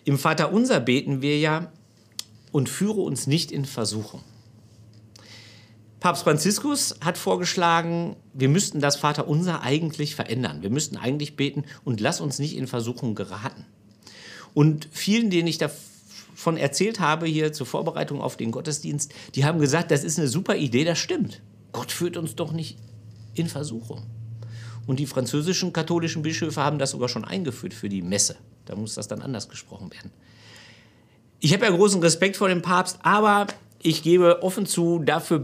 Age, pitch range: 50-69, 115-170 Hz